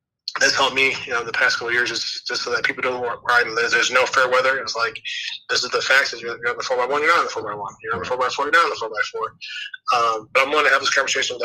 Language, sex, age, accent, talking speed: English, male, 20-39, American, 300 wpm